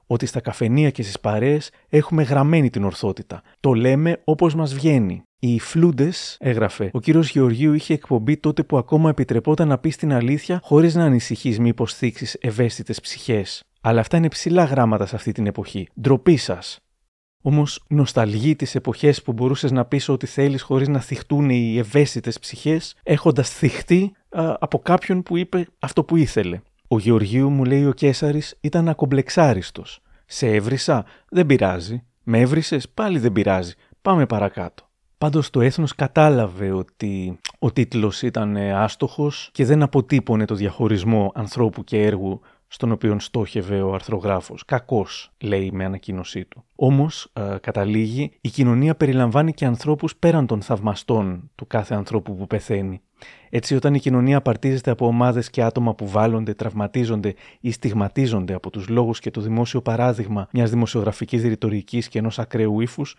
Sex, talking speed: male, 155 wpm